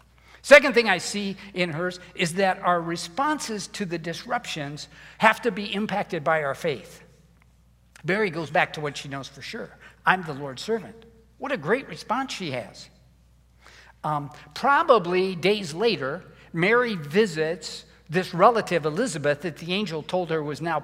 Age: 60-79